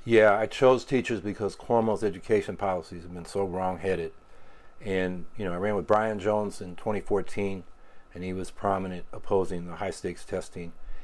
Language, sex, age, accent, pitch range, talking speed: English, male, 50-69, American, 90-105 Hz, 170 wpm